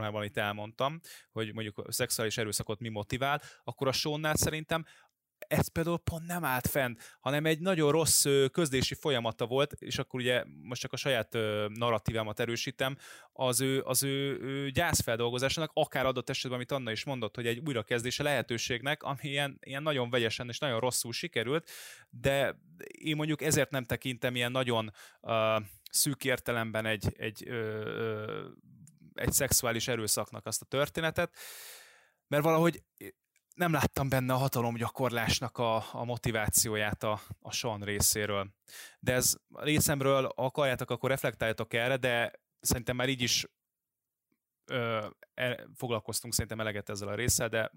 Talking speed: 150 wpm